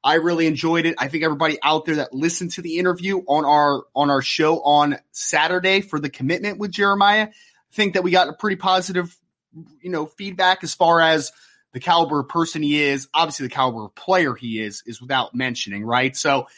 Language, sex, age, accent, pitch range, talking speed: English, male, 30-49, American, 140-175 Hz, 210 wpm